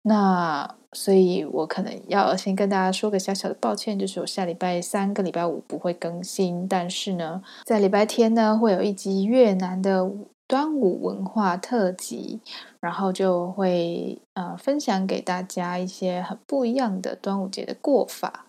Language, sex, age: Chinese, female, 20-39